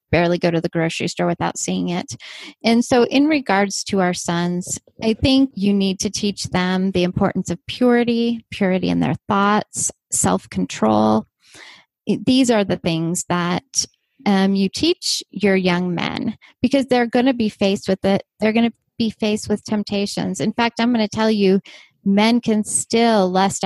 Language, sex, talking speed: English, female, 175 wpm